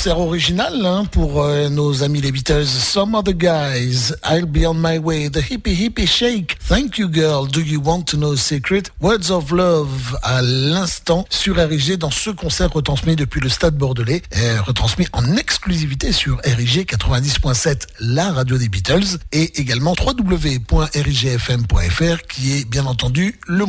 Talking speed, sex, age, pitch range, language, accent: 165 wpm, male, 60-79, 125-170 Hz, French, French